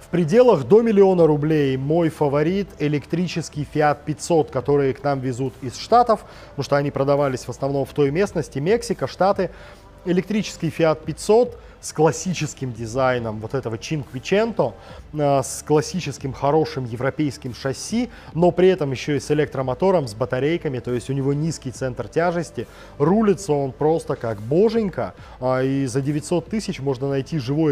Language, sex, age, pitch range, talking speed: Russian, male, 20-39, 135-170 Hz, 150 wpm